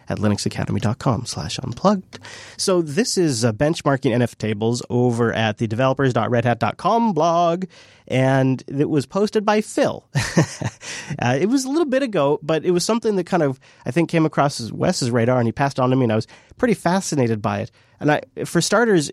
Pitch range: 120-155 Hz